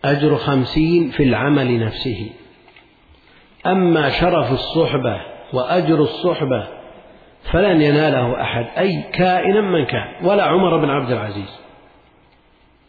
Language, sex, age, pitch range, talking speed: Arabic, male, 50-69, 110-140 Hz, 100 wpm